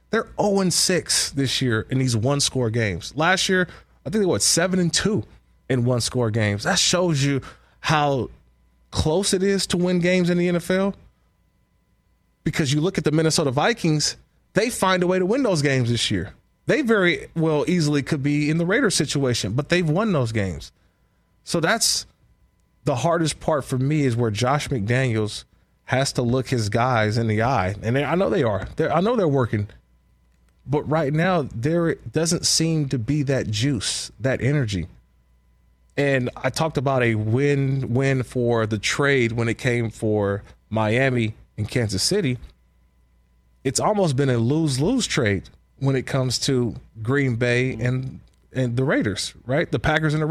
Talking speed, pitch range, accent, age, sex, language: 170 wpm, 110-155 Hz, American, 20-39, male, English